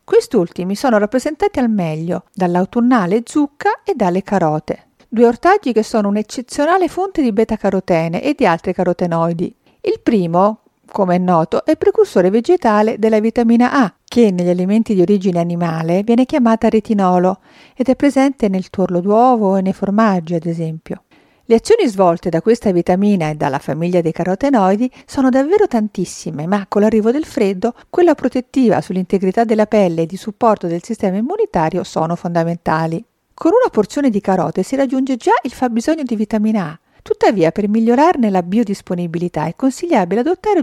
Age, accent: 50-69, native